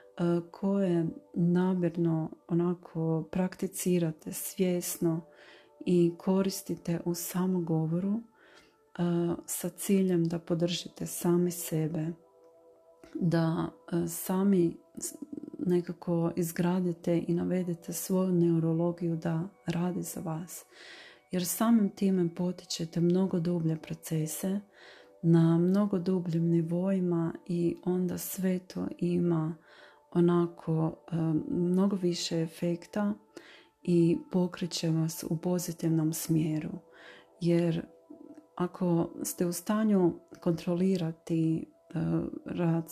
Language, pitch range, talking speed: Croatian, 165-180 Hz, 85 wpm